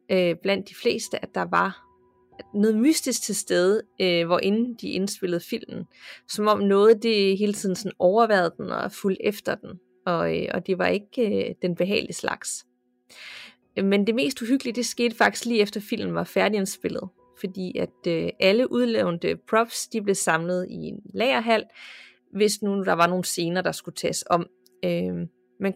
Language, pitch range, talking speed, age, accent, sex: Danish, 175-220 Hz, 160 wpm, 30-49, native, female